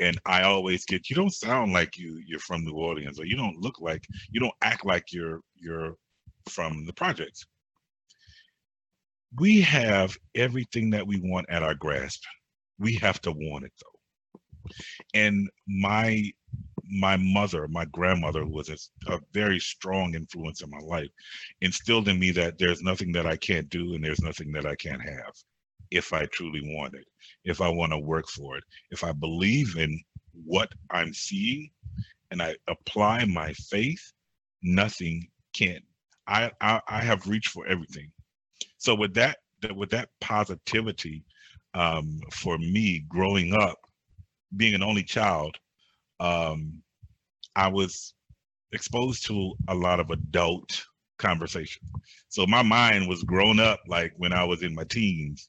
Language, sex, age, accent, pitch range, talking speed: English, male, 40-59, American, 80-105 Hz, 155 wpm